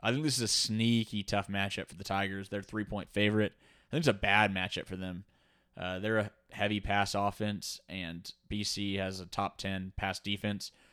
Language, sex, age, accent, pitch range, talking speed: English, male, 20-39, American, 95-105 Hz, 190 wpm